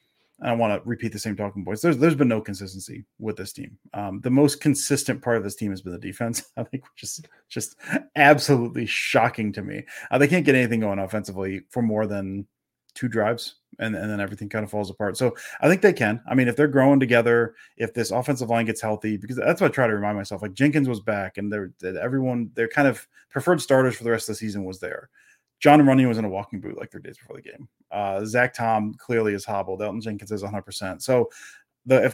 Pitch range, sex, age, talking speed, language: 105-125 Hz, male, 30-49, 245 wpm, English